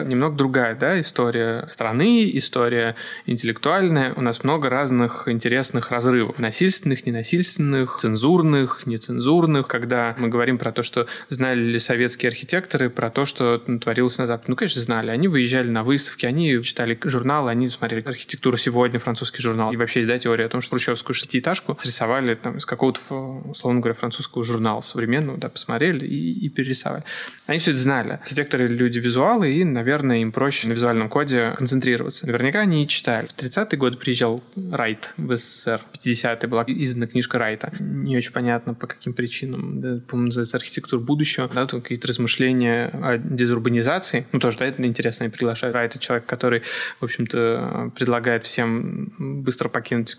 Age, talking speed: 20-39, 165 wpm